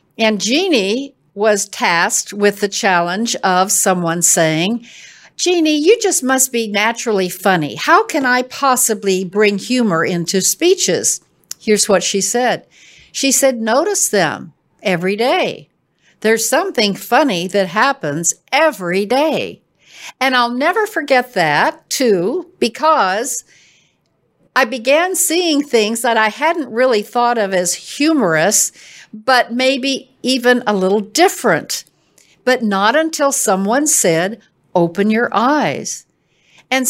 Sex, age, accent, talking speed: female, 60-79, American, 125 wpm